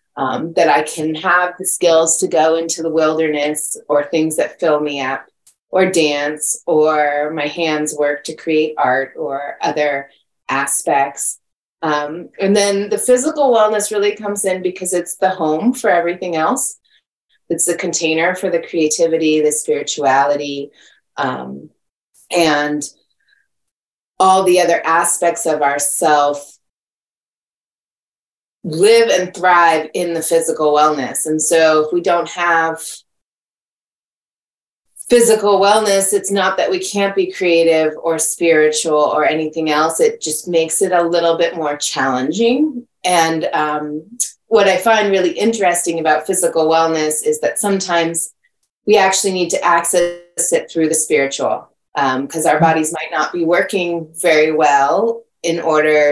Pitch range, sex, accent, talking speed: 155-185 Hz, female, American, 140 wpm